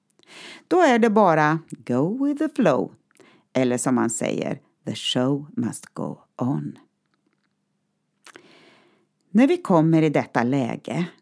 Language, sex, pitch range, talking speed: Swedish, female, 140-200 Hz, 125 wpm